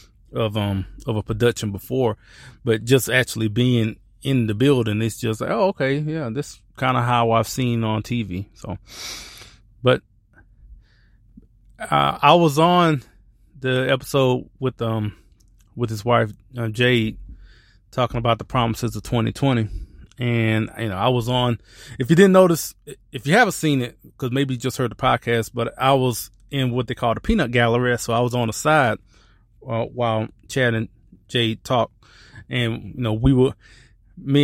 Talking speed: 165 wpm